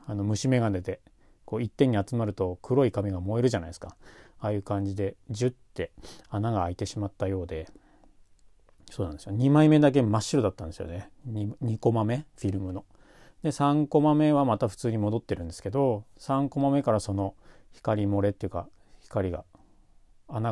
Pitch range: 95-125 Hz